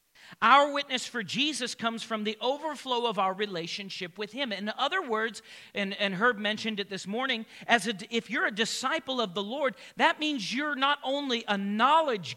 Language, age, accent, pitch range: English, 40-59, American, 170-230 Hz